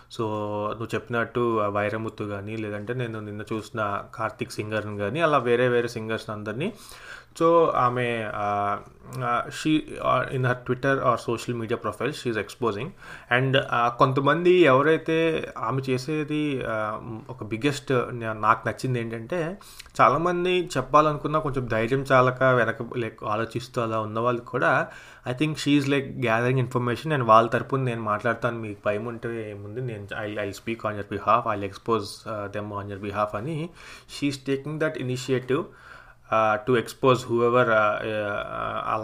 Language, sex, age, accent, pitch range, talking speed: English, male, 20-39, Indian, 110-130 Hz, 105 wpm